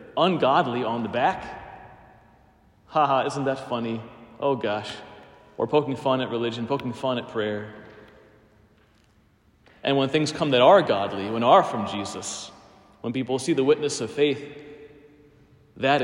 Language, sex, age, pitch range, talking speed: English, male, 30-49, 110-145 Hz, 140 wpm